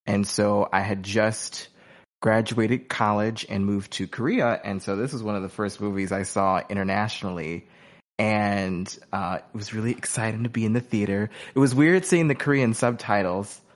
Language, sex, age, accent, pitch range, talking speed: English, male, 20-39, American, 105-135 Hz, 180 wpm